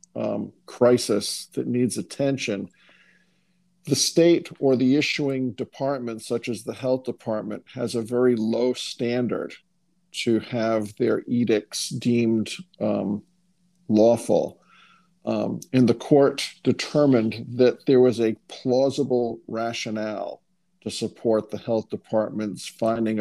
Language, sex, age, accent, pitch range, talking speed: English, male, 50-69, American, 115-145 Hz, 115 wpm